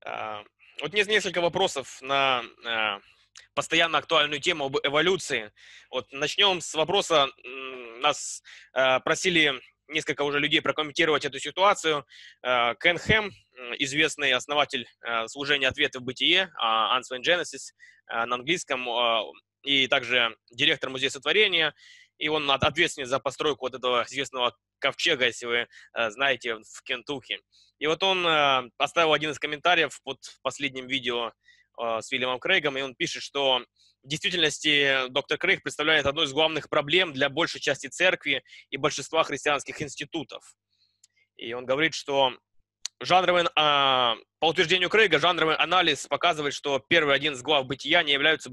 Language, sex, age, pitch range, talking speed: Russian, male, 20-39, 130-160 Hz, 130 wpm